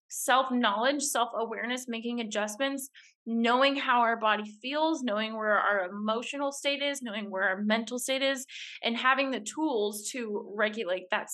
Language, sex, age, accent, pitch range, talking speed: English, female, 20-39, American, 215-270 Hz, 150 wpm